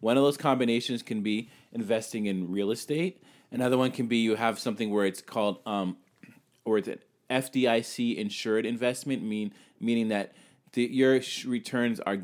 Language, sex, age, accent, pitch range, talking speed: English, male, 20-39, American, 105-140 Hz, 170 wpm